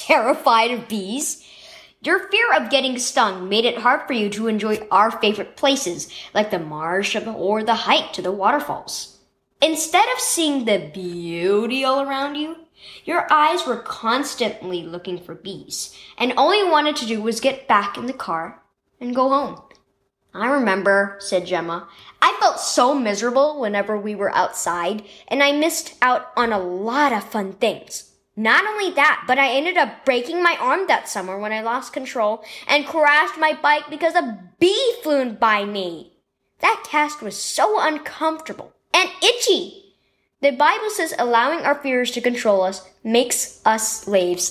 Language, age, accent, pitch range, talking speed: English, 10-29, American, 210-300 Hz, 165 wpm